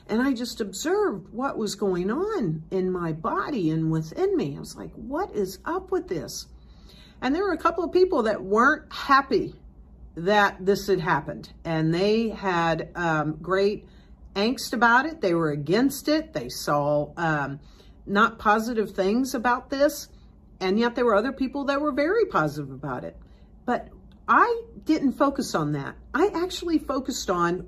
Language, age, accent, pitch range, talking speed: English, 50-69, American, 180-270 Hz, 170 wpm